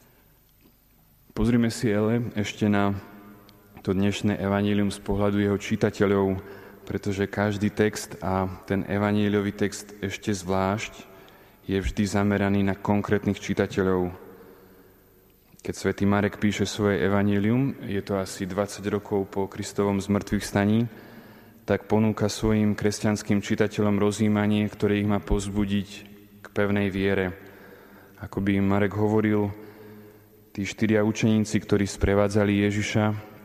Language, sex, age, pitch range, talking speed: Slovak, male, 20-39, 100-105 Hz, 115 wpm